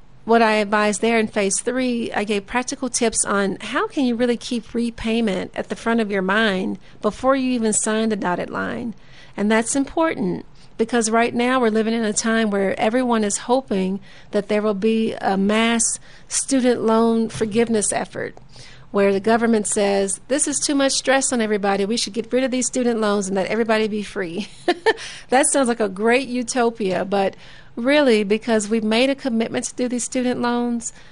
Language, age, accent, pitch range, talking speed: English, 40-59, American, 210-250 Hz, 190 wpm